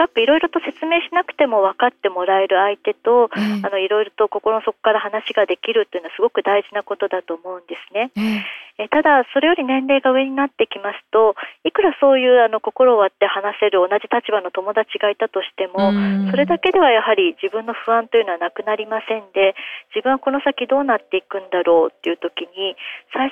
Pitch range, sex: 195-275 Hz, female